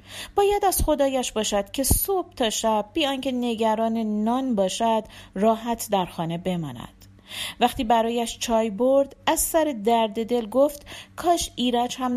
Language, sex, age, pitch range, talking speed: Persian, female, 40-59, 175-250 Hz, 145 wpm